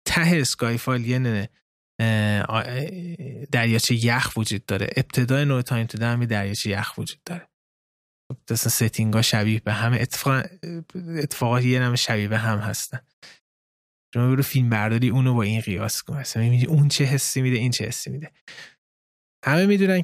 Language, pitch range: Persian, 110-145 Hz